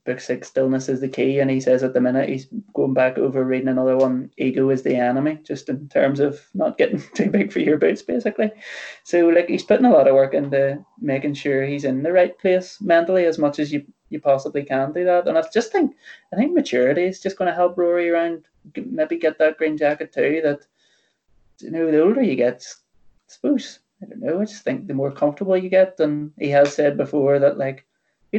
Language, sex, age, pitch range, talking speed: English, male, 20-39, 135-190 Hz, 230 wpm